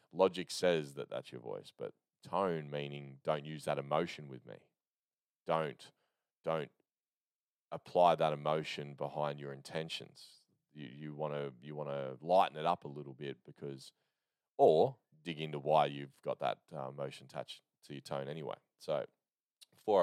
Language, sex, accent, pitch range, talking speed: English, male, Australian, 70-80 Hz, 160 wpm